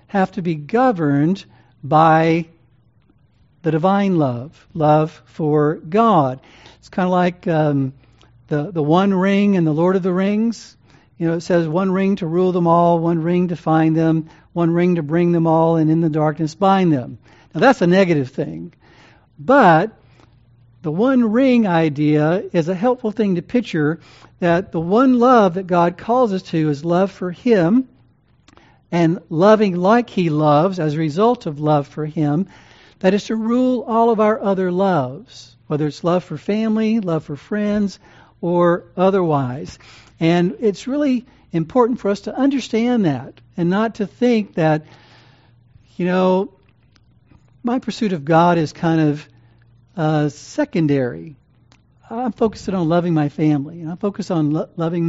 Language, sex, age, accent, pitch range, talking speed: English, male, 60-79, American, 150-200 Hz, 165 wpm